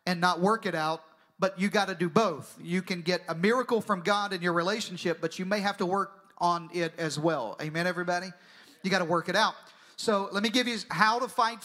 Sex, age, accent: male, 40-59, American